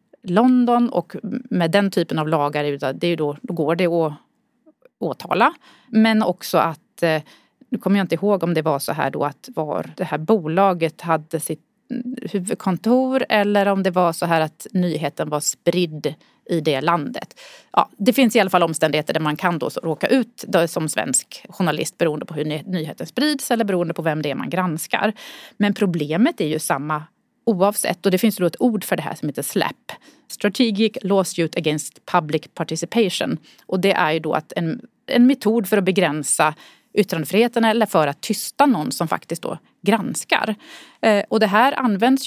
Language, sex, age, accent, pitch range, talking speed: Swedish, female, 30-49, native, 165-225 Hz, 185 wpm